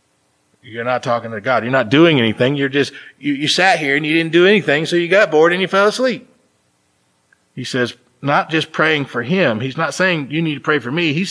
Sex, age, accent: male, 40-59, American